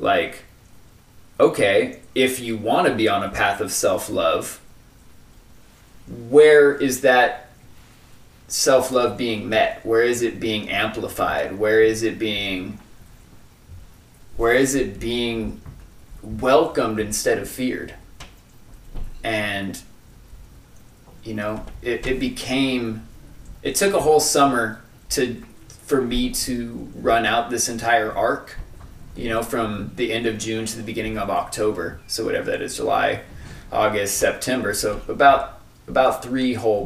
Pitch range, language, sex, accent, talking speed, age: 105-125 Hz, English, male, American, 130 wpm, 20-39